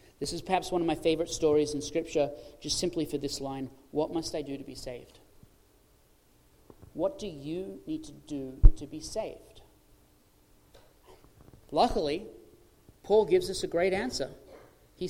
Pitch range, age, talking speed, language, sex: 175-225 Hz, 30-49, 155 wpm, English, male